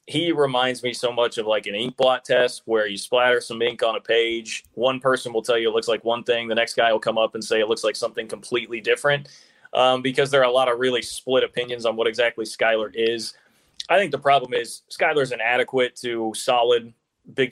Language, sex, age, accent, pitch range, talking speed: English, male, 20-39, American, 120-145 Hz, 235 wpm